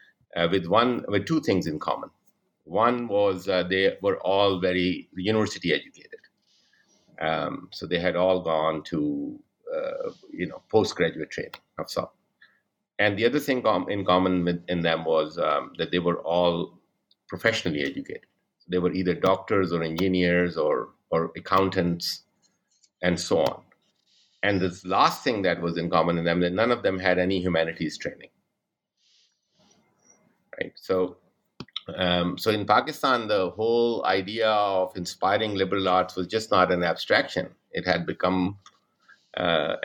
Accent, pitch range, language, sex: Indian, 85-110 Hz, English, male